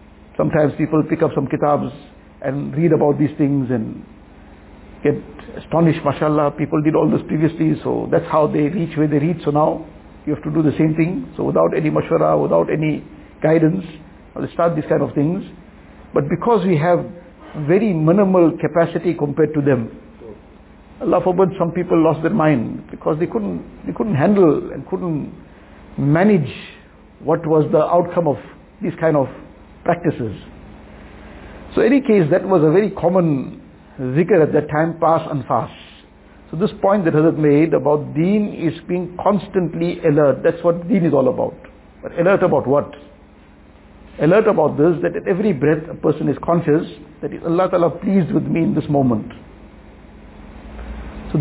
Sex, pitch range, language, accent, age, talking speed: male, 150-175 Hz, English, Indian, 60-79, 170 wpm